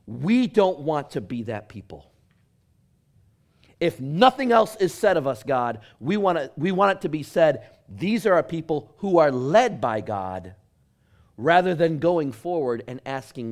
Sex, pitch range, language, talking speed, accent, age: male, 100-155 Hz, English, 175 wpm, American, 40-59